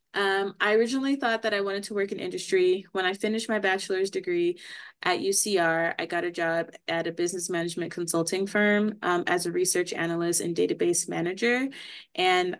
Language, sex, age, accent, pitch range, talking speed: English, female, 20-39, American, 170-210 Hz, 180 wpm